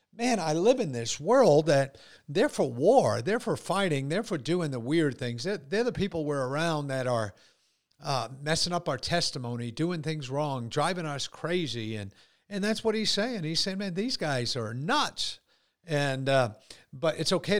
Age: 50-69